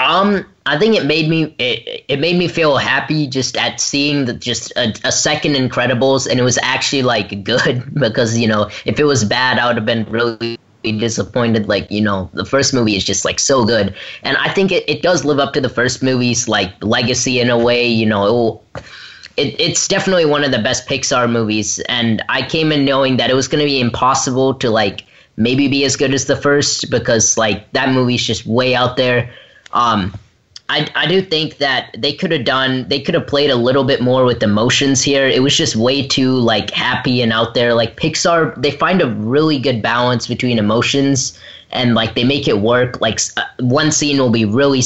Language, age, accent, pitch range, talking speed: English, 10-29, American, 115-145 Hz, 220 wpm